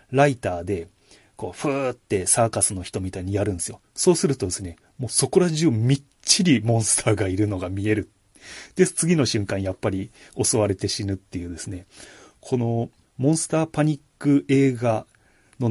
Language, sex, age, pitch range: Japanese, male, 30-49, 95-130 Hz